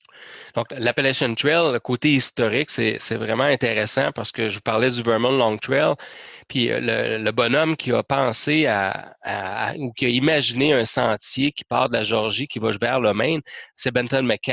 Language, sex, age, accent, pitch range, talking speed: French, male, 30-49, Canadian, 115-145 Hz, 190 wpm